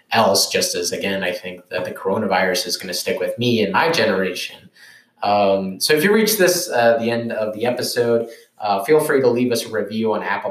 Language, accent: English, American